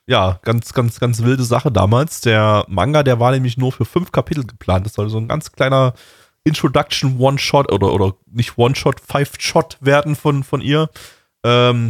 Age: 20-39